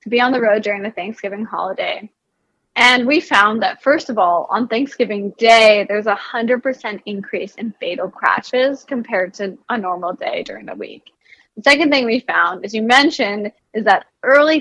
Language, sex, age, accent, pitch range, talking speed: English, female, 10-29, American, 205-255 Hz, 190 wpm